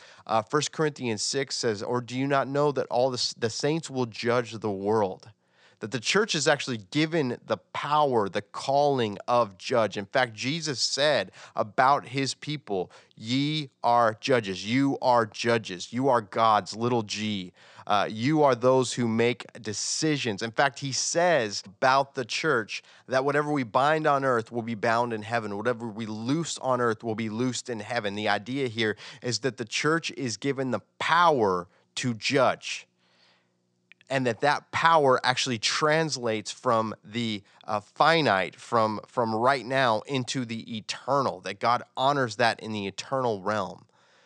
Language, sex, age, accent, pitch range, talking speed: English, male, 30-49, American, 110-135 Hz, 165 wpm